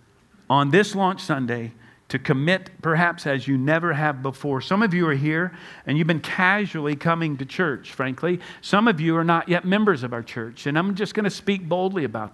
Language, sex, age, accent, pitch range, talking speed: English, male, 50-69, American, 140-180 Hz, 210 wpm